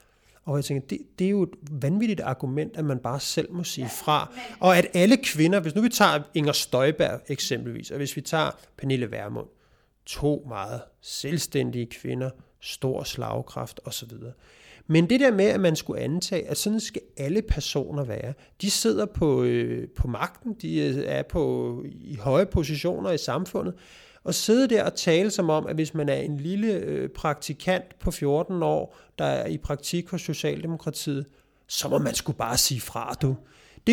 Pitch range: 145-215 Hz